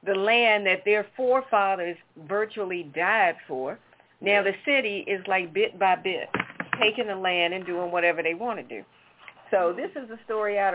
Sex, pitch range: female, 195-270 Hz